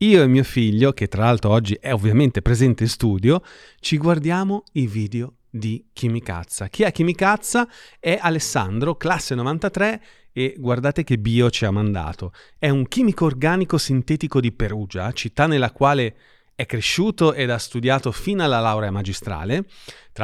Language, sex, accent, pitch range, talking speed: Italian, male, native, 115-175 Hz, 155 wpm